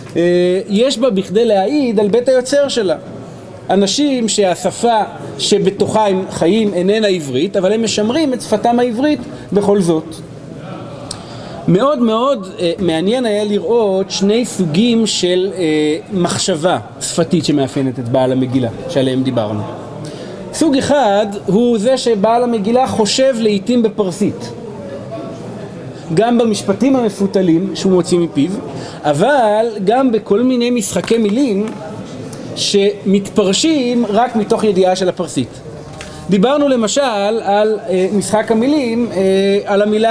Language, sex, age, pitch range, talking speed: Hebrew, male, 40-59, 180-230 Hz, 110 wpm